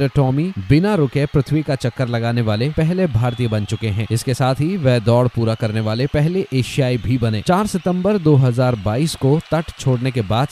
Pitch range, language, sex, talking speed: 120-155 Hz, Hindi, male, 190 wpm